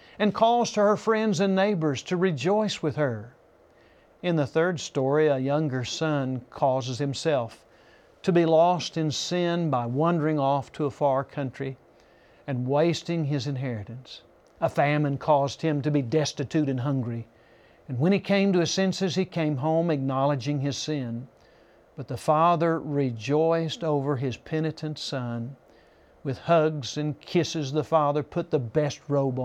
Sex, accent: male, American